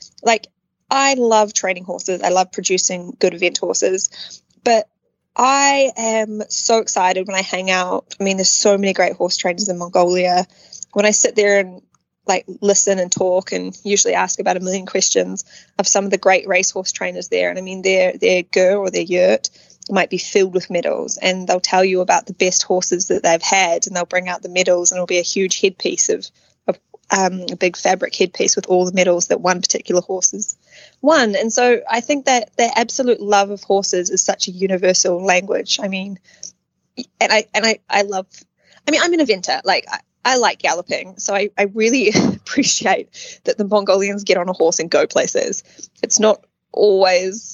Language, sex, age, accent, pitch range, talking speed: English, female, 20-39, Australian, 185-220 Hz, 200 wpm